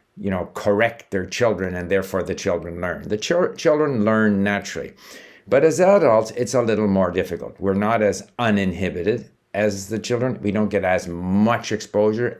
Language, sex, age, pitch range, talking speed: English, male, 60-79, 95-120 Hz, 175 wpm